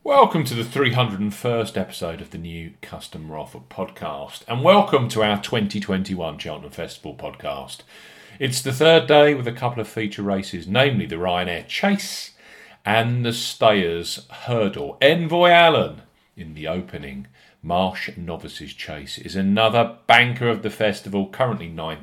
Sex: male